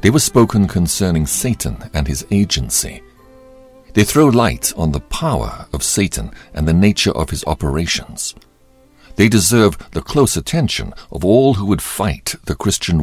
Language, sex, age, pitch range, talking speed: English, male, 60-79, 75-110 Hz, 155 wpm